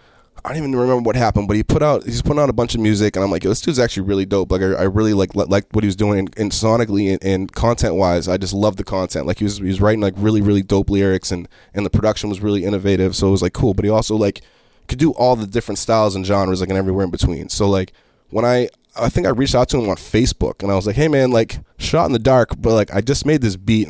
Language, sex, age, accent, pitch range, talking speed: English, male, 20-39, American, 95-120 Hz, 300 wpm